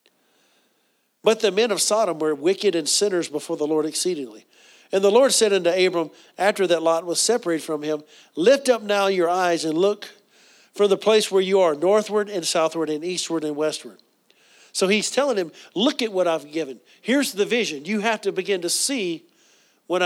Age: 50-69